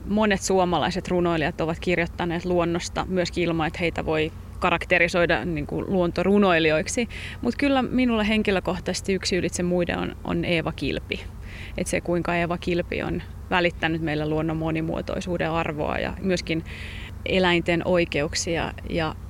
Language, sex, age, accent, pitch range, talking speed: Finnish, female, 30-49, native, 165-190 Hz, 130 wpm